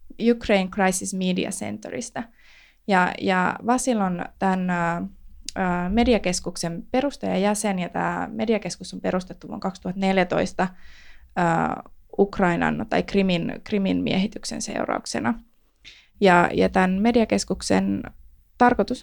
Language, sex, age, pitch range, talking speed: Finnish, female, 20-39, 180-230 Hz, 95 wpm